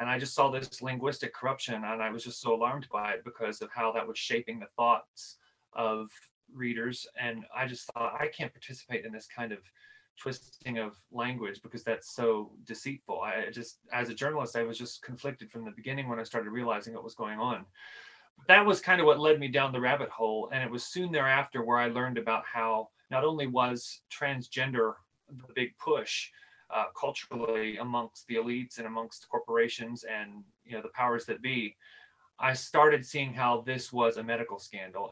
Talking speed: 195 wpm